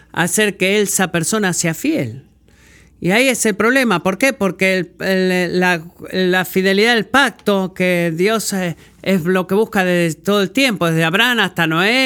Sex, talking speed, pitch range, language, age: male, 180 wpm, 170-210 Hz, Spanish, 40-59